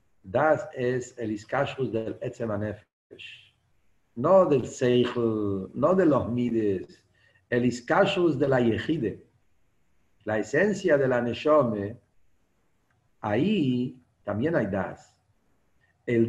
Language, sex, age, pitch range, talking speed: English, male, 50-69, 135-210 Hz, 105 wpm